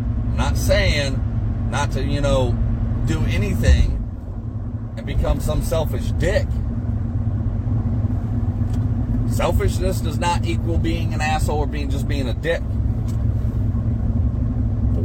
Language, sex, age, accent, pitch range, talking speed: English, male, 40-59, American, 90-110 Hz, 110 wpm